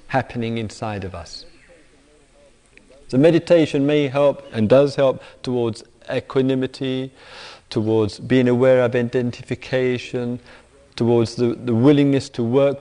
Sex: male